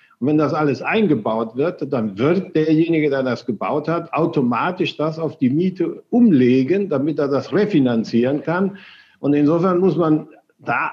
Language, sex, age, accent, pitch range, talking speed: German, male, 60-79, German, 140-180 Hz, 160 wpm